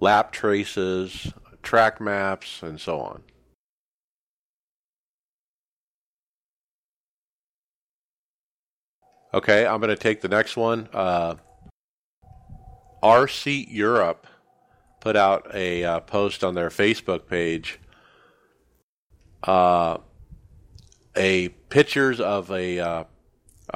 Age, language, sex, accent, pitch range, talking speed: 50-69, English, male, American, 90-115 Hz, 80 wpm